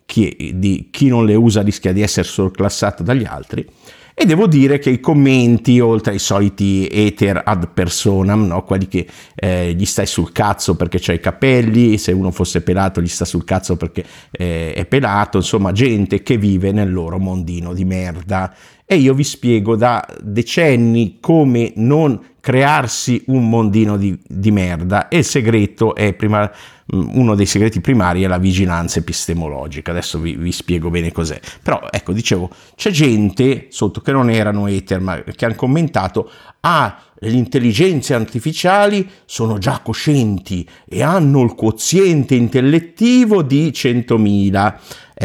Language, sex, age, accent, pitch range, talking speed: Italian, male, 50-69, native, 90-120 Hz, 155 wpm